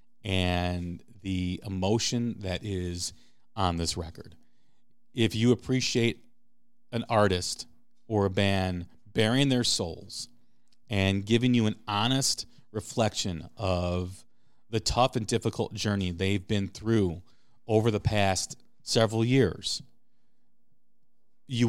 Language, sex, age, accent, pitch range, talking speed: English, male, 40-59, American, 100-125 Hz, 110 wpm